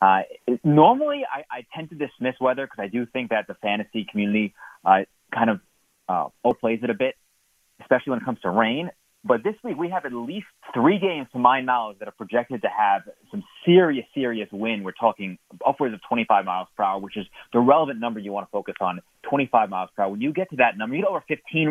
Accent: American